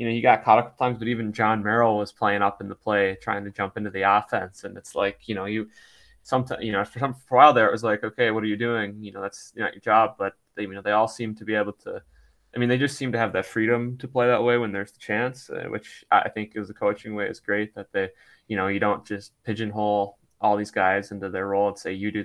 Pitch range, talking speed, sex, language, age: 95-110 Hz, 295 wpm, male, English, 20-39